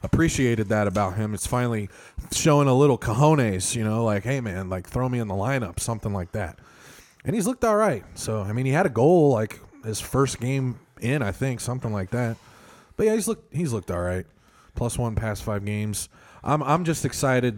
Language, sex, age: English, male, 20-39